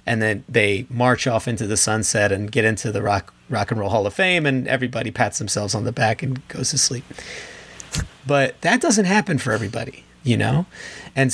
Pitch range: 115-140 Hz